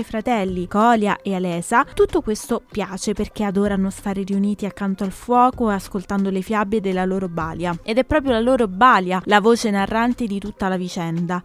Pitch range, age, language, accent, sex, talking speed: 200-255 Hz, 20-39, Italian, native, female, 180 wpm